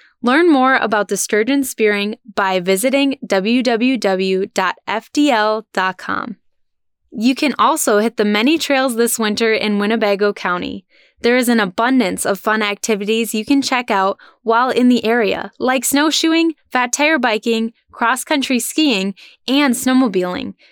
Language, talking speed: English, 130 wpm